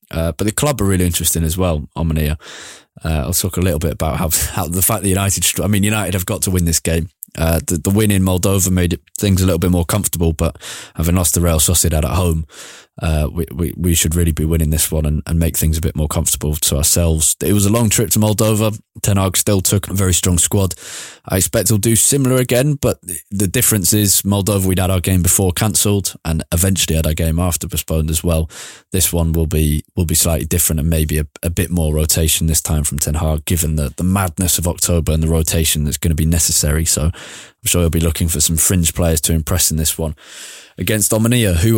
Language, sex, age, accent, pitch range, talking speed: English, male, 20-39, British, 80-100 Hz, 235 wpm